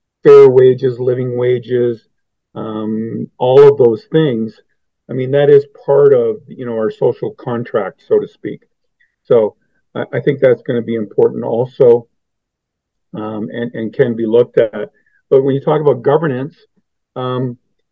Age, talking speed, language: 50-69, 155 wpm, English